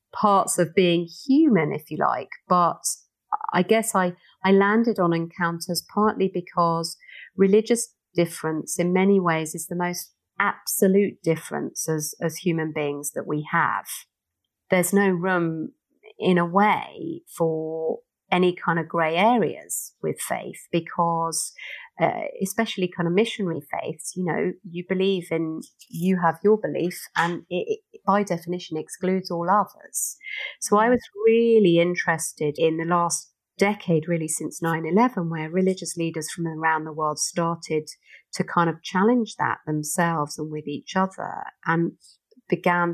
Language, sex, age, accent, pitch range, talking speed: English, female, 40-59, British, 165-195 Hz, 145 wpm